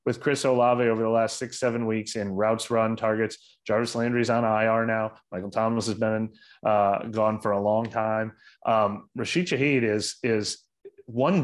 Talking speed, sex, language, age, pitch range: 180 wpm, male, English, 30-49, 110-135 Hz